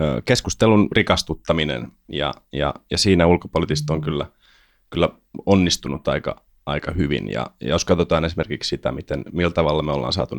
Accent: native